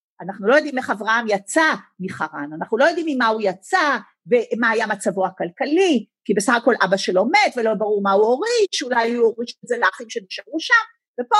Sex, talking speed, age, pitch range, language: female, 195 wpm, 50-69, 240-320 Hz, Hebrew